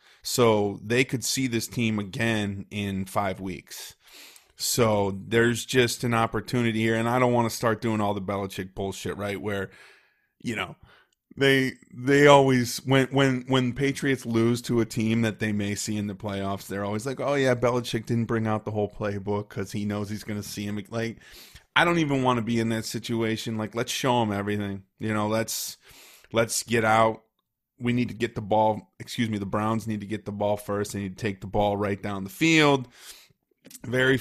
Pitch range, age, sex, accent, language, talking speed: 105-120 Hz, 30-49, male, American, English, 205 wpm